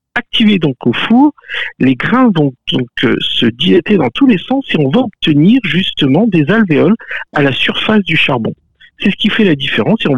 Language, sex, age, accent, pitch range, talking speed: French, male, 50-69, French, 160-250 Hz, 205 wpm